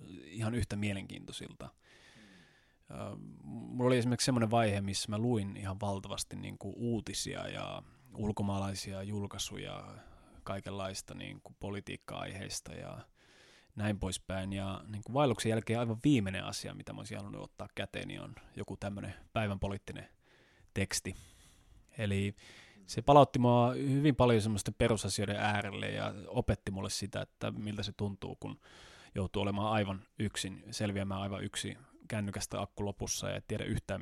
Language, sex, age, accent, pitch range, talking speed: Finnish, male, 20-39, native, 100-120 Hz, 125 wpm